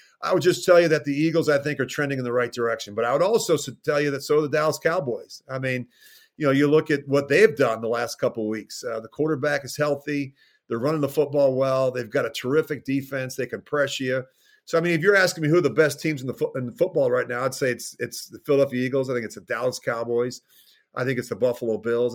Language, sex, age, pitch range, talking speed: English, male, 40-59, 130-155 Hz, 275 wpm